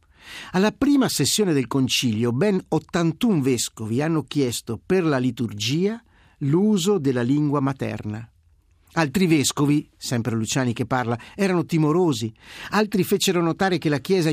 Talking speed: 130 wpm